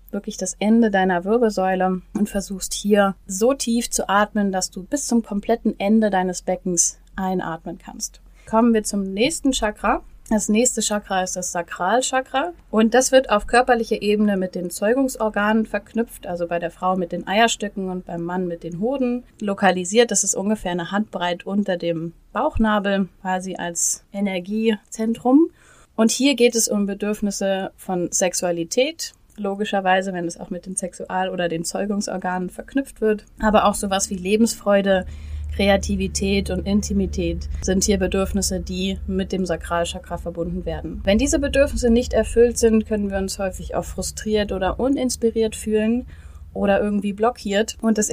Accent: German